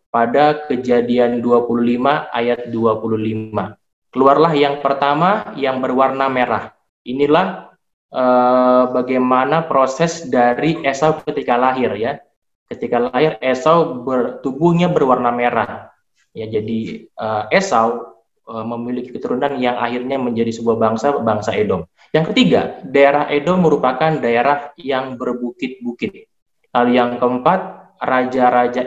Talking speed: 110 wpm